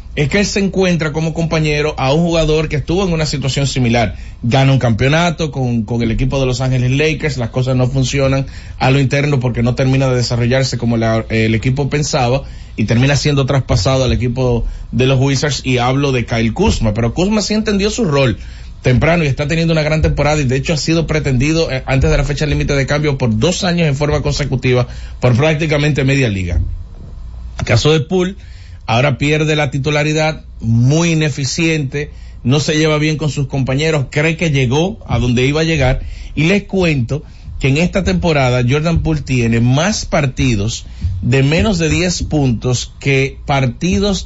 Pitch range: 125-155 Hz